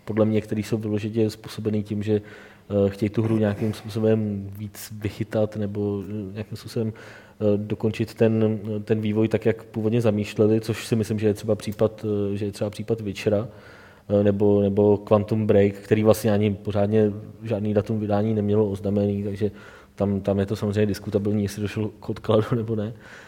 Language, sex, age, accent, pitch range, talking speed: Czech, male, 20-39, native, 105-120 Hz, 155 wpm